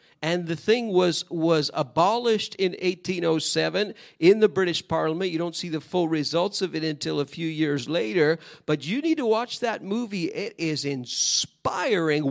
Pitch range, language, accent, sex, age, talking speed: 165-225 Hz, English, American, male, 50-69, 170 wpm